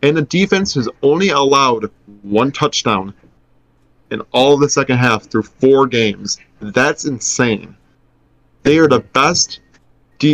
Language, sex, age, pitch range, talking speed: English, male, 20-39, 115-145 Hz, 140 wpm